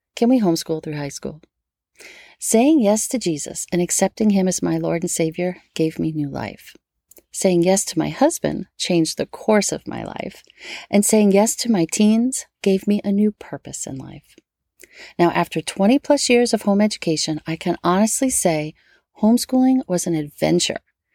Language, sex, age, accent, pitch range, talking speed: English, female, 40-59, American, 170-225 Hz, 175 wpm